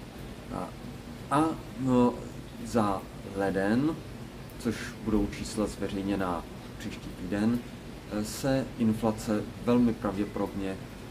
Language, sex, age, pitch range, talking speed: Czech, male, 30-49, 100-120 Hz, 80 wpm